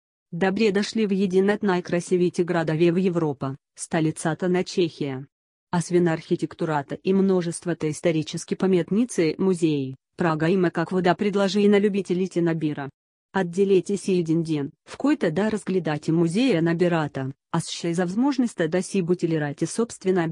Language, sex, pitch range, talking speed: Bulgarian, female, 160-190 Hz, 135 wpm